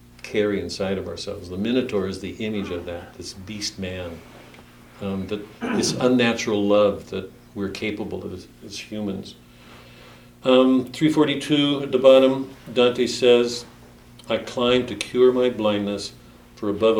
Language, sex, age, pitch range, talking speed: English, male, 50-69, 100-125 Hz, 140 wpm